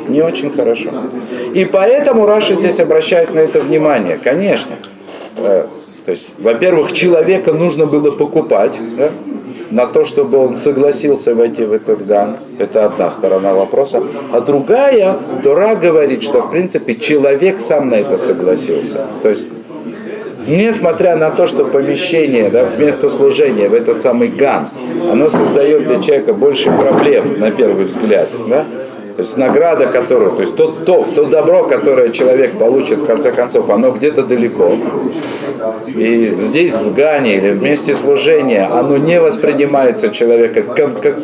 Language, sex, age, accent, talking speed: Russian, male, 50-69, native, 145 wpm